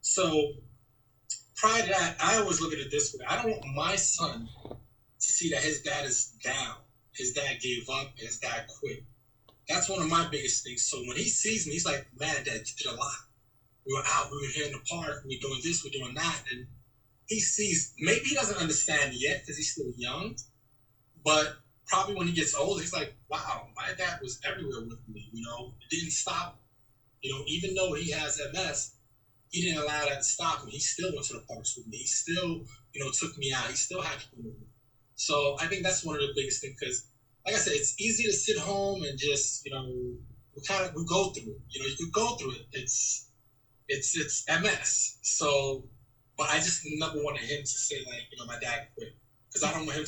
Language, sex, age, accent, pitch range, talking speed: English, male, 30-49, American, 120-160 Hz, 230 wpm